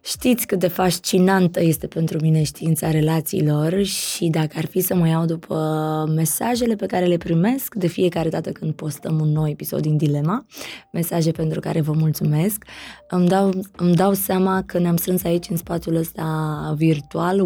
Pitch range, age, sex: 160-195 Hz, 20-39, female